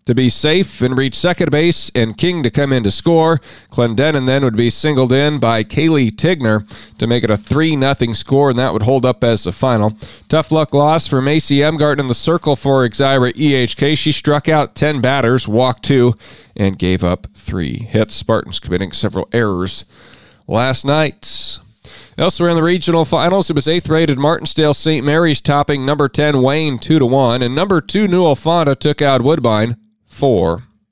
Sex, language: male, English